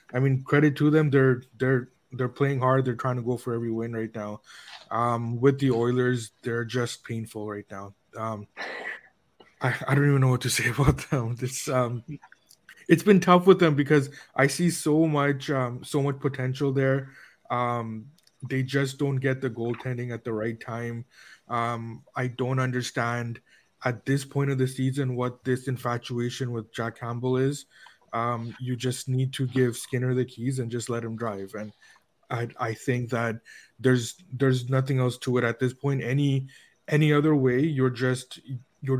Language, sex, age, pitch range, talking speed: English, male, 20-39, 120-135 Hz, 185 wpm